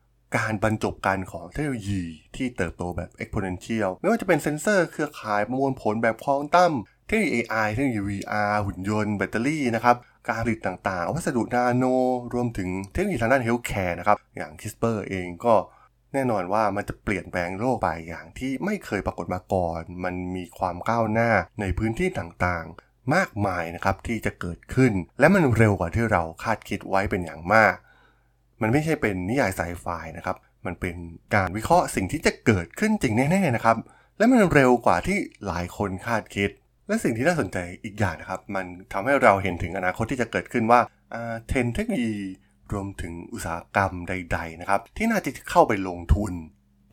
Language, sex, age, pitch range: Thai, male, 20-39, 90-120 Hz